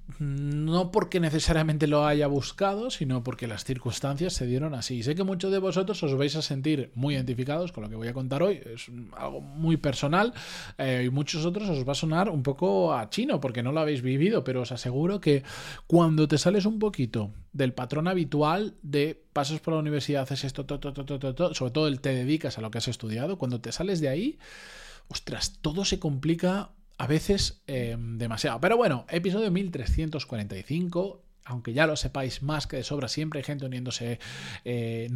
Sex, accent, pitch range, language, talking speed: male, Spanish, 130-170 Hz, Spanish, 200 wpm